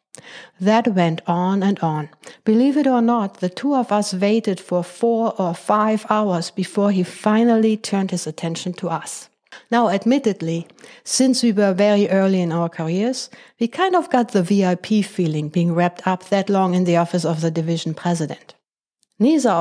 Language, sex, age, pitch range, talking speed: English, female, 60-79, 180-230 Hz, 175 wpm